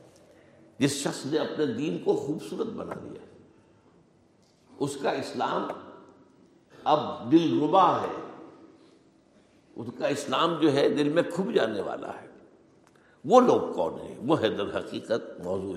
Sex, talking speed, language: male, 135 wpm, Urdu